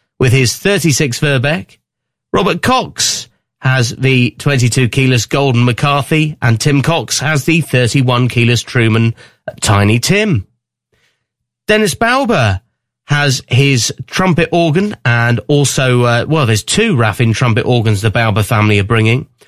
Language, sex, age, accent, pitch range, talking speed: English, male, 30-49, British, 120-150 Hz, 130 wpm